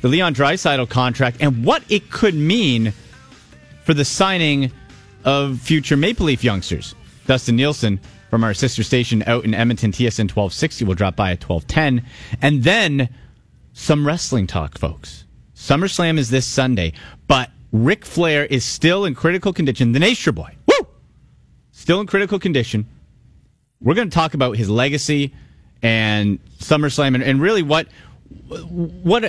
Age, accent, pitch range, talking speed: 30-49, American, 115-155 Hz, 150 wpm